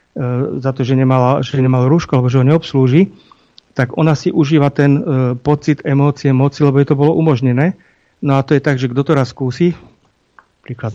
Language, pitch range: Slovak, 130-150 Hz